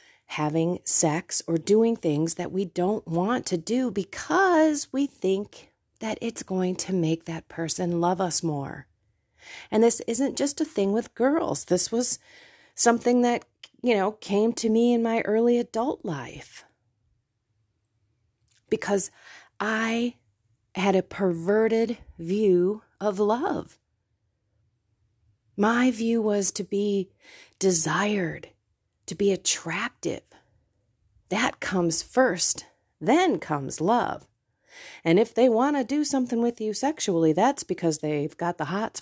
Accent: American